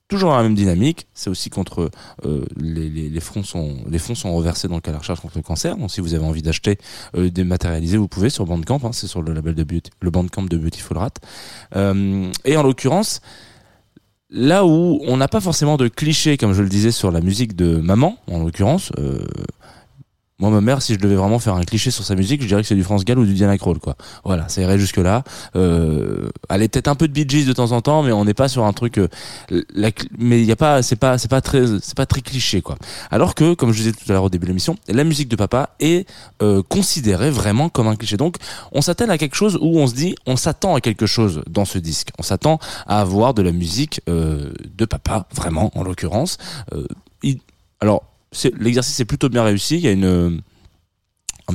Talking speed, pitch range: 245 wpm, 90-125 Hz